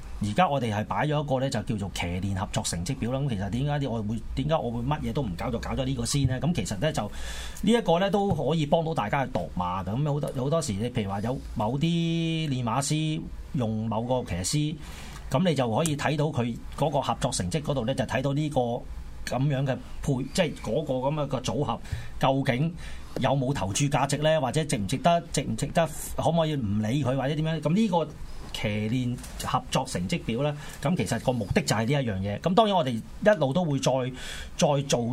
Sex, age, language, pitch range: male, 30-49, Chinese, 110-150 Hz